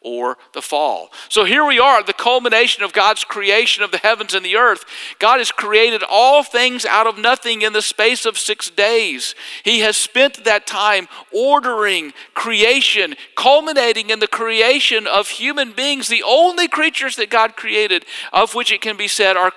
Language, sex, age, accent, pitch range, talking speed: English, male, 50-69, American, 195-285 Hz, 180 wpm